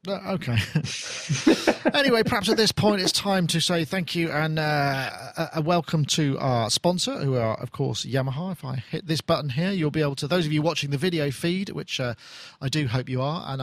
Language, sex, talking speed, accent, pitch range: English, male, 220 wpm, British, 135-175 Hz